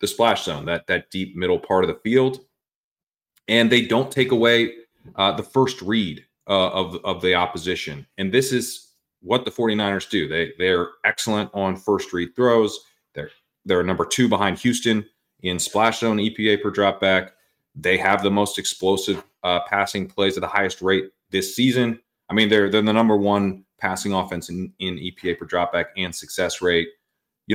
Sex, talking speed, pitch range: male, 190 wpm, 95-115 Hz